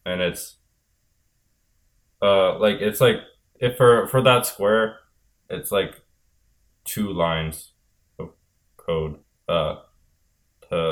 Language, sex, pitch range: English, male, 80-95 Hz